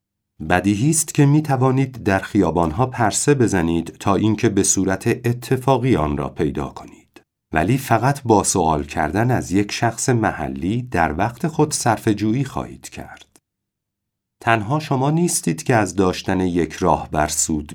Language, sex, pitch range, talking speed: Persian, male, 90-125 Hz, 140 wpm